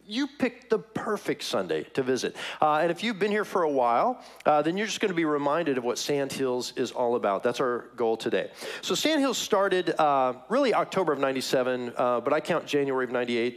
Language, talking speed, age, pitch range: English, 215 wpm, 40-59, 130-195 Hz